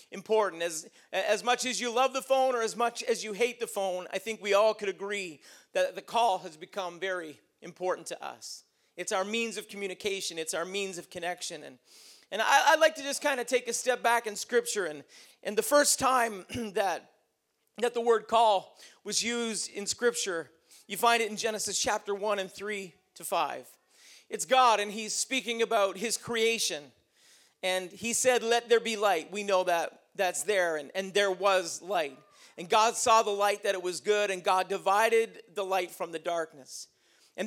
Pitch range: 195-250 Hz